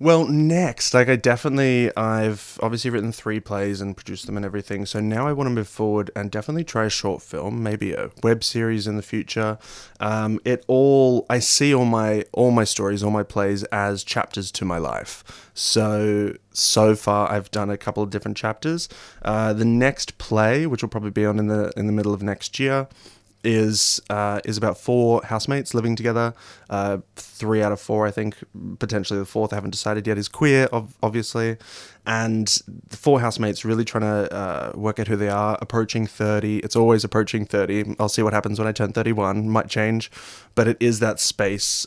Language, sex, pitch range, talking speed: English, male, 105-115 Hz, 200 wpm